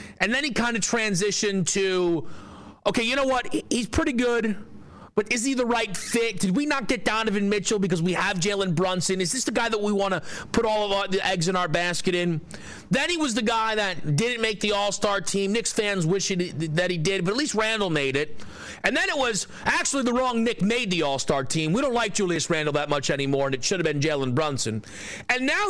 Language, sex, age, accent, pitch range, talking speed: English, male, 40-59, American, 165-220 Hz, 235 wpm